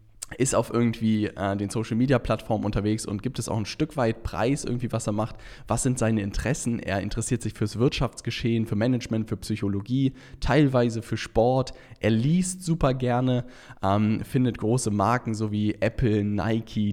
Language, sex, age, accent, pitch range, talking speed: German, male, 10-29, German, 105-130 Hz, 165 wpm